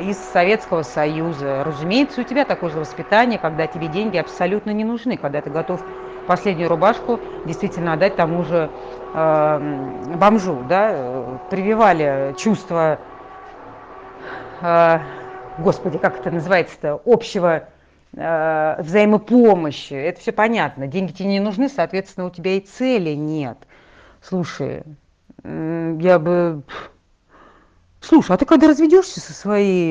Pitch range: 150-205 Hz